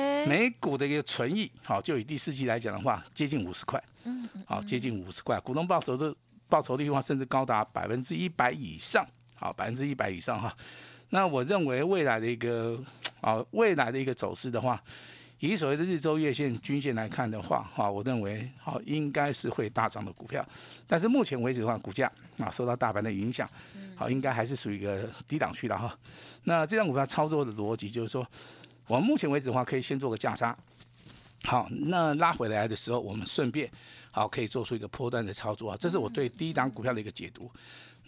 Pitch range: 115-150 Hz